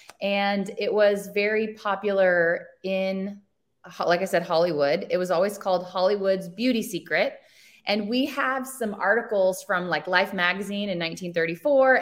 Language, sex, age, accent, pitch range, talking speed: English, female, 20-39, American, 180-220 Hz, 140 wpm